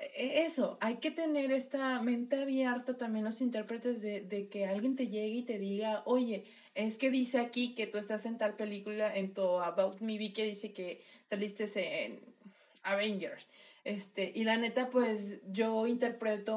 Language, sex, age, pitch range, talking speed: Spanish, female, 20-39, 215-285 Hz, 175 wpm